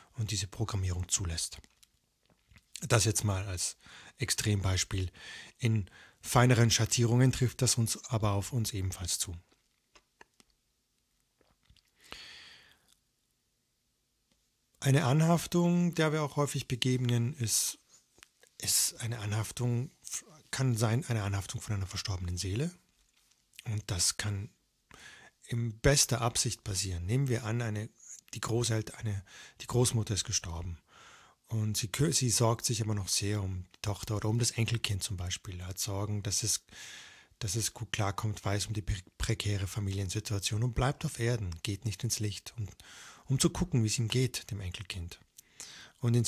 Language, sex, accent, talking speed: German, male, German, 140 wpm